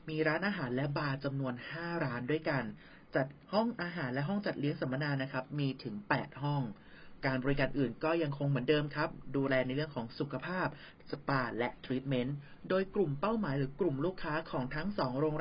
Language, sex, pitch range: Thai, male, 130-160 Hz